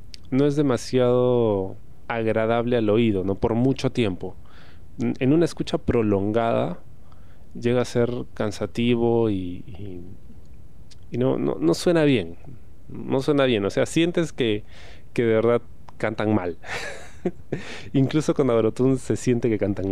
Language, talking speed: Spanish, 135 wpm